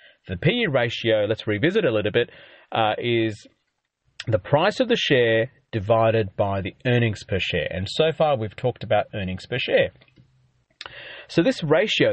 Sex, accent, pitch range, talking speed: male, Australian, 110-140 Hz, 165 wpm